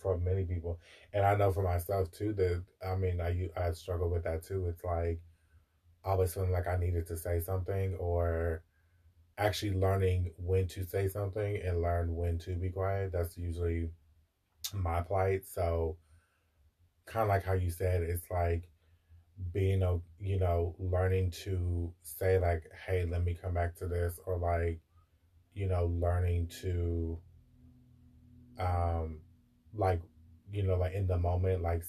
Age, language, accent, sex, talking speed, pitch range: 20-39, English, American, male, 160 wpm, 85-95 Hz